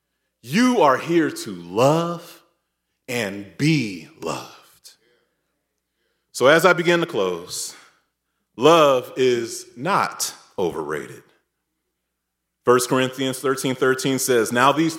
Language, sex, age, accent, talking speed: English, male, 30-49, American, 95 wpm